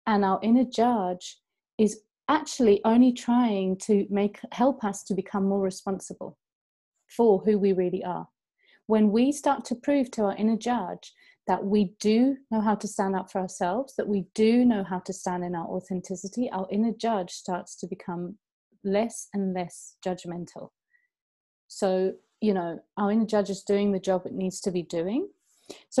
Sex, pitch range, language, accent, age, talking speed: female, 195-235 Hz, Spanish, British, 30-49, 175 wpm